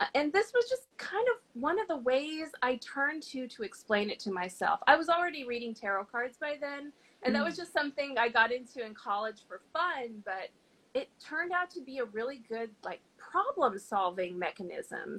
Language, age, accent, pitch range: English, 30-49, American, 220-295 Hz